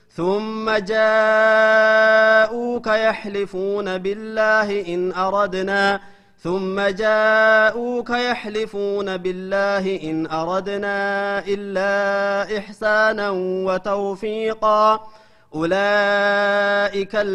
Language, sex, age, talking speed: Amharic, male, 30-49, 55 wpm